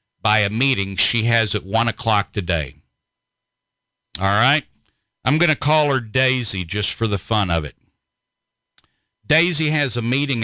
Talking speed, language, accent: 155 wpm, English, American